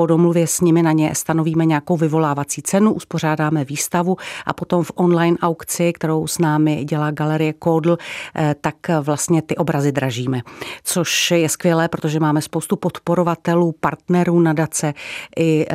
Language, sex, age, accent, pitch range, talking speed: Czech, female, 40-59, native, 155-170 Hz, 140 wpm